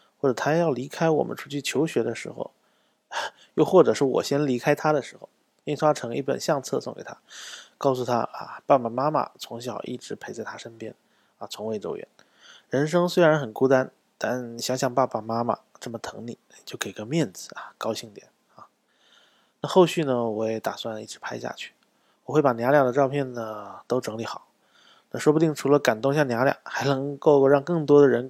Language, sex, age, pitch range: Chinese, male, 20-39, 115-145 Hz